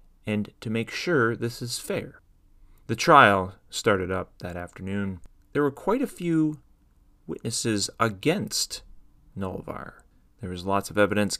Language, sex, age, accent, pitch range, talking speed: English, male, 30-49, American, 95-120 Hz, 135 wpm